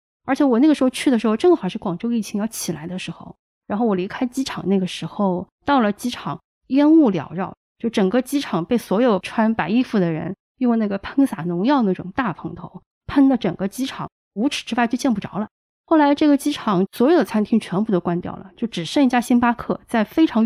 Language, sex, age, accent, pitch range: Chinese, female, 20-39, native, 190-250 Hz